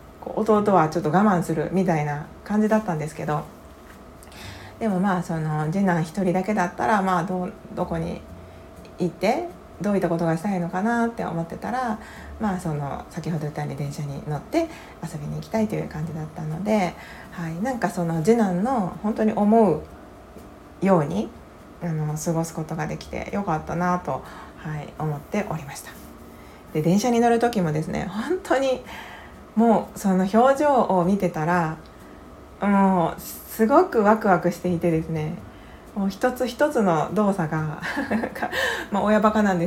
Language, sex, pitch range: Japanese, female, 155-215 Hz